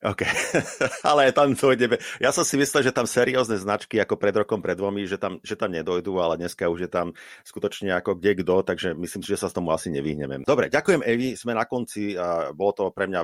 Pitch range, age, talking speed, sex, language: 90-110 Hz, 30-49, 235 wpm, male, Slovak